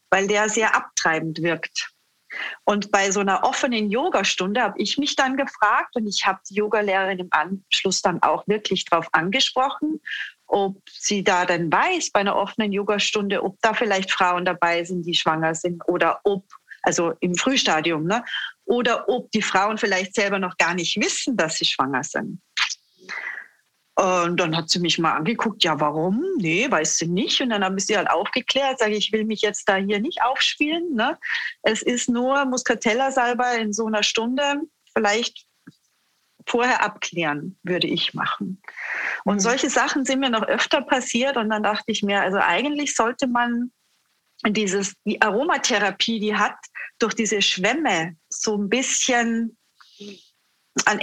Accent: German